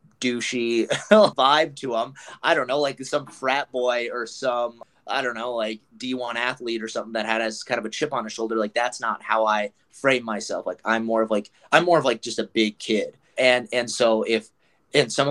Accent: American